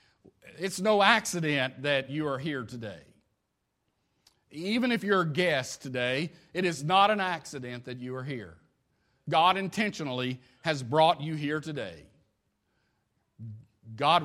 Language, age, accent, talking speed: English, 40-59, American, 130 wpm